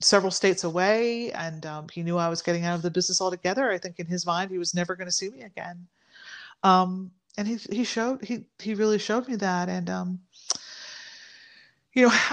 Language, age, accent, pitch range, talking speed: English, 30-49, American, 170-210 Hz, 210 wpm